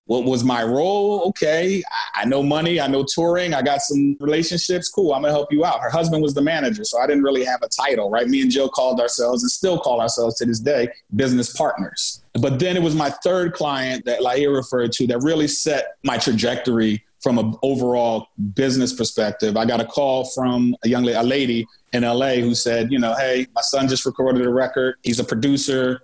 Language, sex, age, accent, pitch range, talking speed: English, male, 30-49, American, 120-140 Hz, 215 wpm